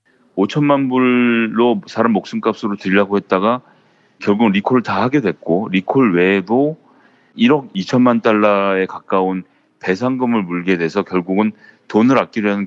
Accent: native